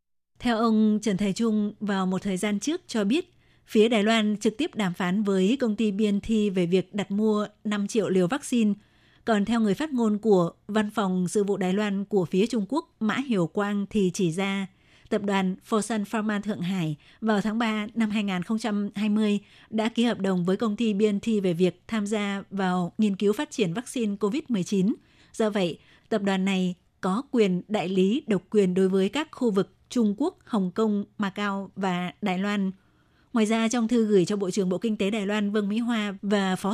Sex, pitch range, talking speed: female, 195-225 Hz, 210 wpm